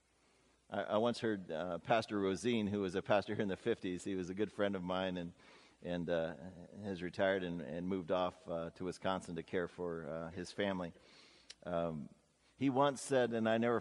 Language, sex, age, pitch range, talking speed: English, male, 50-69, 90-110 Hz, 200 wpm